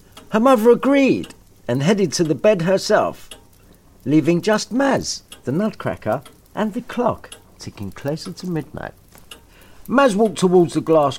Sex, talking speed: male, 140 wpm